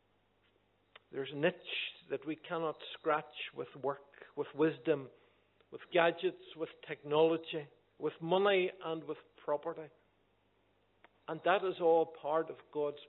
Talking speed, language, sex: 125 wpm, English, male